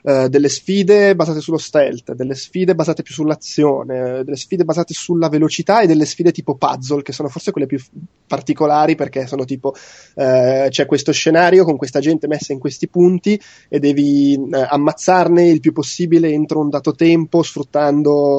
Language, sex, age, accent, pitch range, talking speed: Italian, male, 20-39, native, 135-160 Hz, 165 wpm